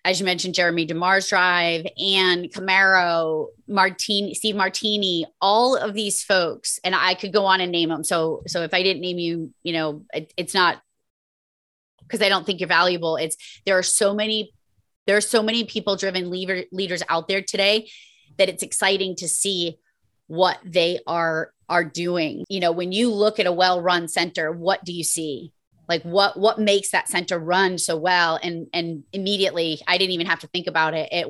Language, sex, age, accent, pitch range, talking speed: English, female, 30-49, American, 165-195 Hz, 190 wpm